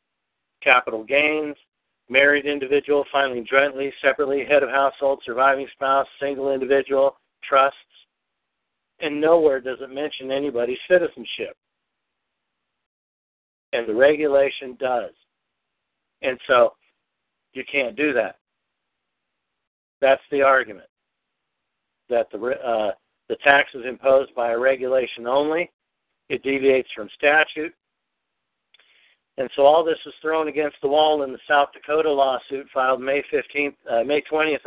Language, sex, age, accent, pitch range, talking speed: English, male, 60-79, American, 130-145 Hz, 120 wpm